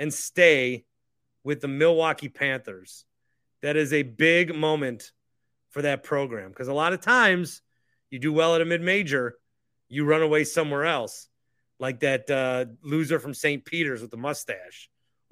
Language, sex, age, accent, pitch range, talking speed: English, male, 30-49, American, 130-190 Hz, 155 wpm